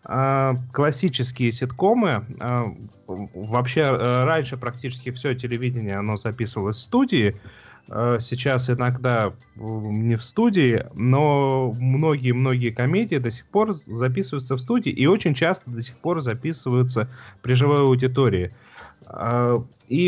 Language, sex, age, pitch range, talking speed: Russian, male, 30-49, 120-150 Hz, 110 wpm